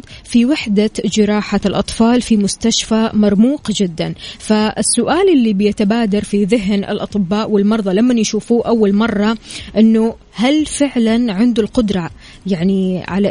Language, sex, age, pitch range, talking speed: Arabic, female, 20-39, 205-245 Hz, 115 wpm